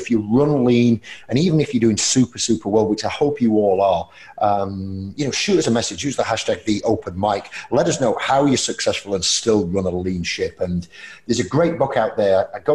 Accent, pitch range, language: British, 115-165 Hz, English